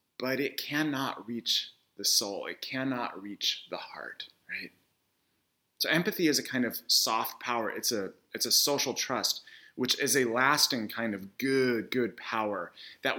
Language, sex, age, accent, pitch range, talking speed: English, male, 30-49, American, 120-195 Hz, 160 wpm